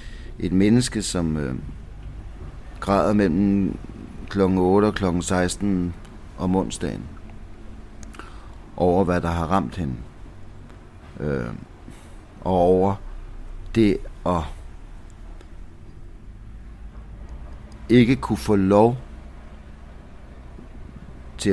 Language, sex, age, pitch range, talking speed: Danish, male, 60-79, 85-105 Hz, 80 wpm